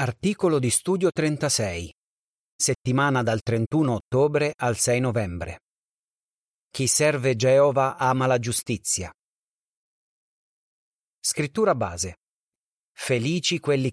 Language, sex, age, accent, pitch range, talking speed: Italian, male, 30-49, native, 115-150 Hz, 90 wpm